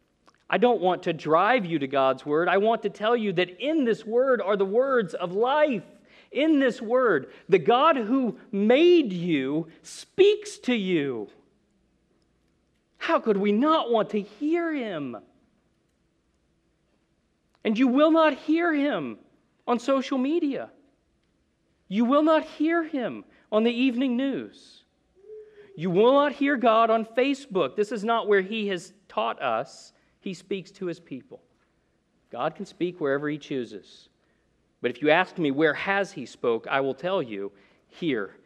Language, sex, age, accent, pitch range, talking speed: English, male, 40-59, American, 170-270 Hz, 155 wpm